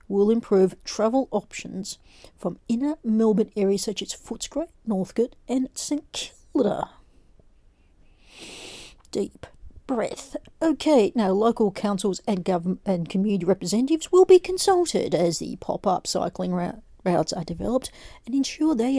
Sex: female